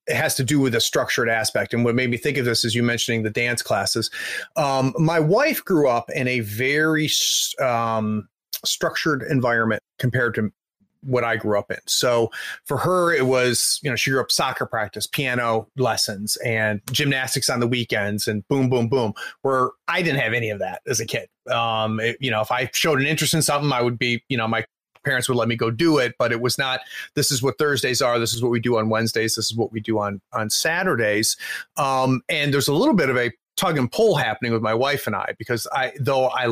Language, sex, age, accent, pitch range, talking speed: English, male, 30-49, American, 115-140 Hz, 230 wpm